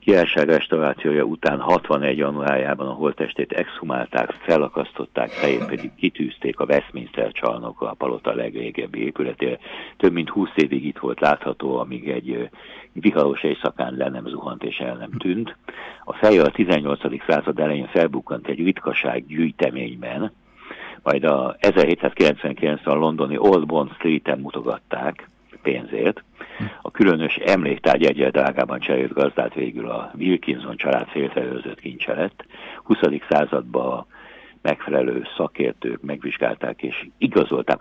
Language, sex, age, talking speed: Hungarian, male, 60-79, 125 wpm